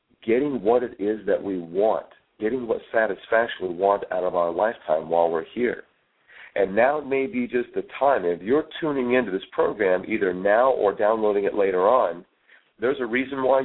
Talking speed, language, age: 190 wpm, English, 50-69